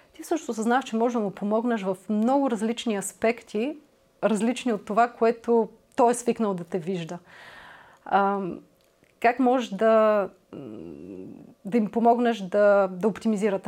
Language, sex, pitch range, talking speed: Bulgarian, female, 190-230 Hz, 135 wpm